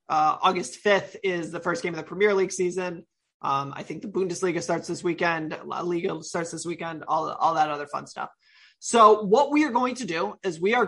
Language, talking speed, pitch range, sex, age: English, 220 wpm, 170-215 Hz, male, 30-49